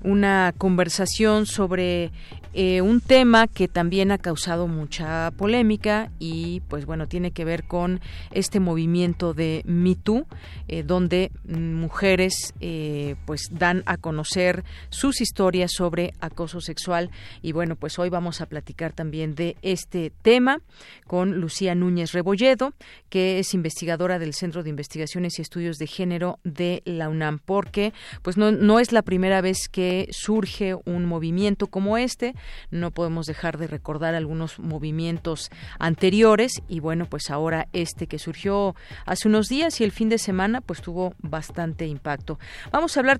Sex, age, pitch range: female, 40-59, 165-200 Hz